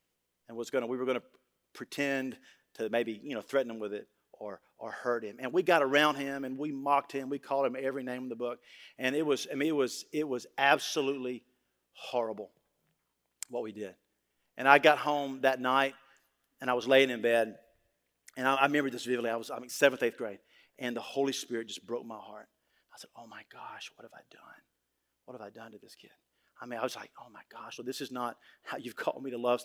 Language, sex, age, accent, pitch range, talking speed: English, male, 50-69, American, 120-145 Hz, 240 wpm